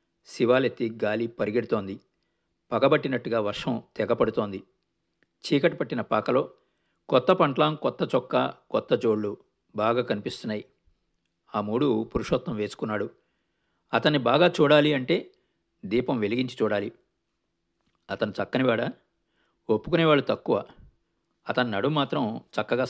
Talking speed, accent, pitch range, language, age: 95 wpm, native, 115-145 Hz, Telugu, 50-69